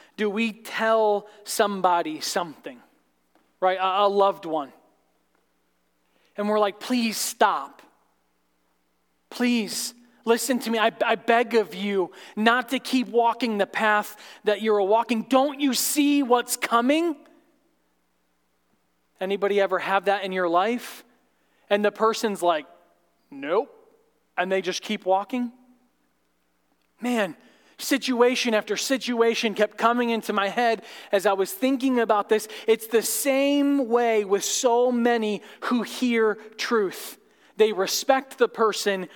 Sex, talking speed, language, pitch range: male, 130 wpm, English, 160-235 Hz